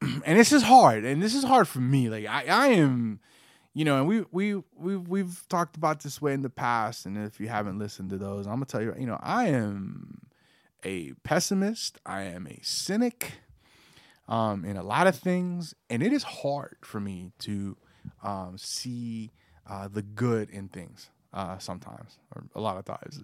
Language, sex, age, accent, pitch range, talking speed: English, male, 20-39, American, 105-145 Hz, 200 wpm